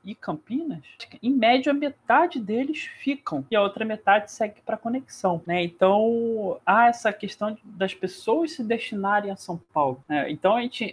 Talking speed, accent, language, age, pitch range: 170 wpm, Brazilian, Portuguese, 20-39, 175-240 Hz